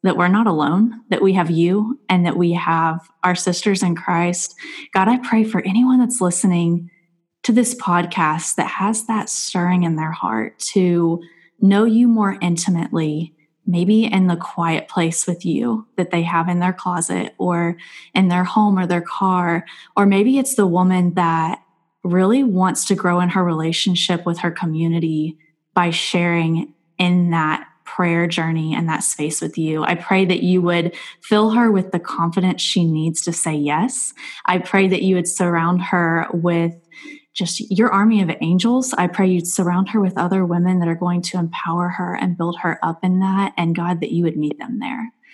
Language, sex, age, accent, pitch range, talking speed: English, female, 10-29, American, 170-195 Hz, 185 wpm